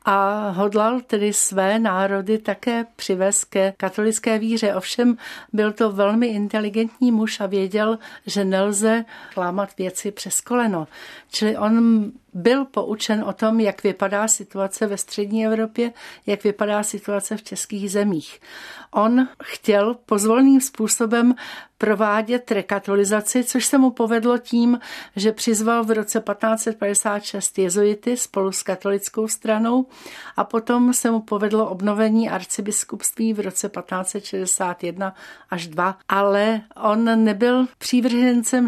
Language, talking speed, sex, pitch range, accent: Czech, 125 wpm, female, 200-230 Hz, native